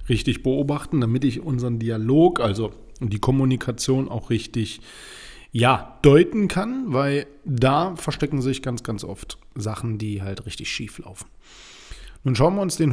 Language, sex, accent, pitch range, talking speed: German, male, German, 125-145 Hz, 145 wpm